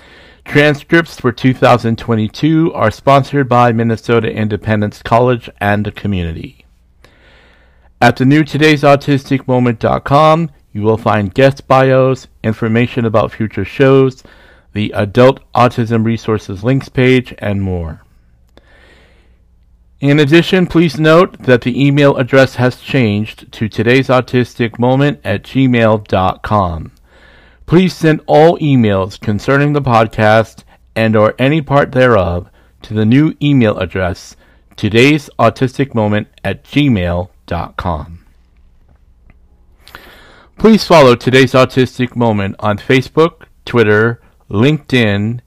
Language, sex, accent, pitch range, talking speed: English, male, American, 105-135 Hz, 100 wpm